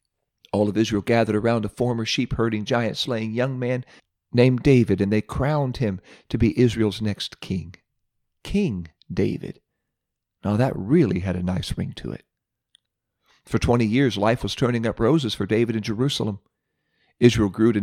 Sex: male